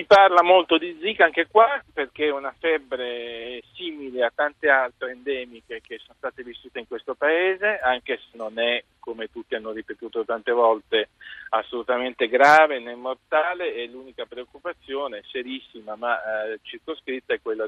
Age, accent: 40-59, native